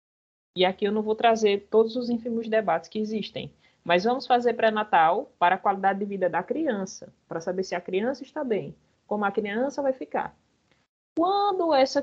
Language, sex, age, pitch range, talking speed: Portuguese, female, 20-39, 175-240 Hz, 185 wpm